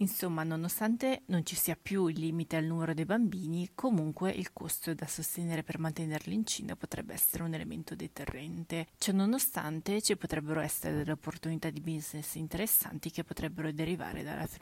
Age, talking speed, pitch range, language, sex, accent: 30-49, 165 wpm, 155-175 Hz, Italian, female, native